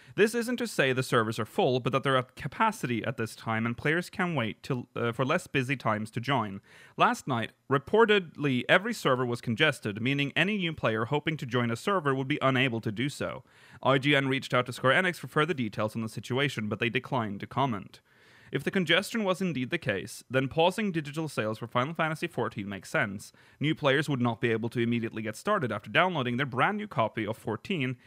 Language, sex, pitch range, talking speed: English, male, 115-155 Hz, 215 wpm